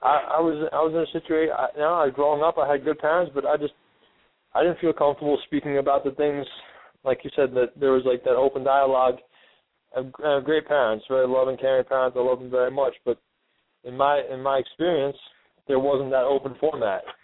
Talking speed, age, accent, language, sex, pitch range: 220 wpm, 20-39, American, English, male, 125-155 Hz